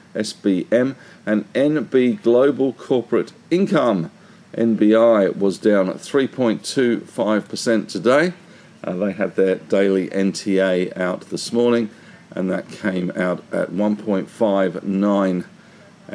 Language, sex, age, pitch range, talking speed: English, male, 50-69, 100-150 Hz, 100 wpm